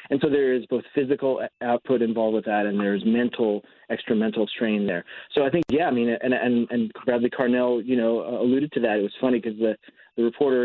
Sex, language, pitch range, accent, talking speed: male, English, 115-135 Hz, American, 230 wpm